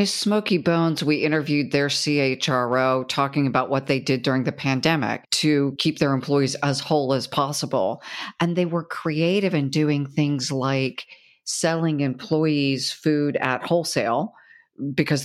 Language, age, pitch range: English, 50-69, 130-155 Hz